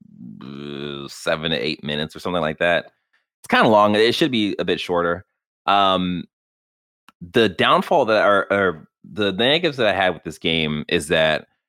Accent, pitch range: American, 80-100 Hz